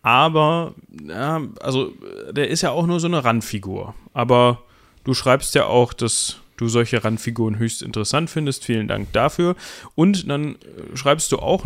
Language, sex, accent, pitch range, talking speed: German, male, German, 115-140 Hz, 160 wpm